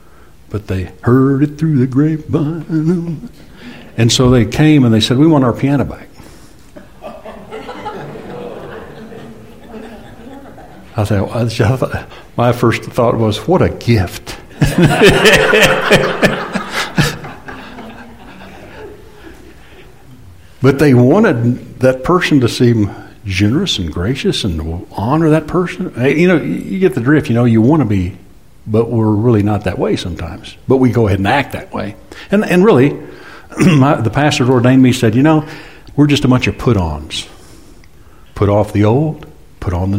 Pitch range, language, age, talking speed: 105-145 Hz, English, 60-79, 145 wpm